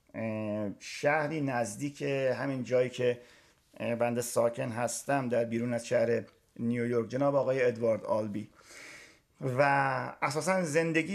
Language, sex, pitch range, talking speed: Persian, male, 110-145 Hz, 110 wpm